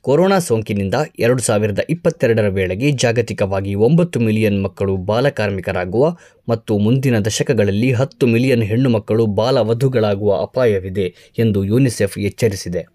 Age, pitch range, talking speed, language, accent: 20-39, 100-135 Hz, 95 wpm, Kannada, native